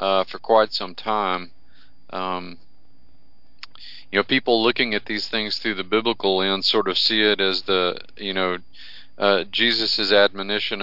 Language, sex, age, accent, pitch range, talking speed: English, male, 40-59, American, 95-110 Hz, 155 wpm